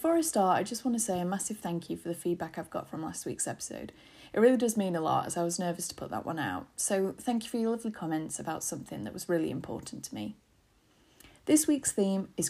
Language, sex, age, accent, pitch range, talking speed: English, female, 30-49, British, 175-225 Hz, 265 wpm